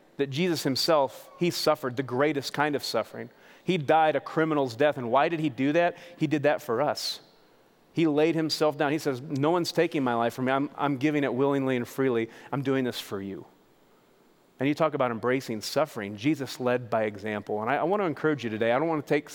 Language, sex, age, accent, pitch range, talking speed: English, male, 30-49, American, 120-145 Hz, 225 wpm